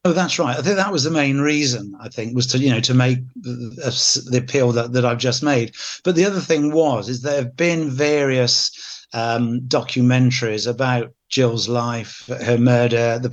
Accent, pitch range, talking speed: British, 120-135 Hz, 205 wpm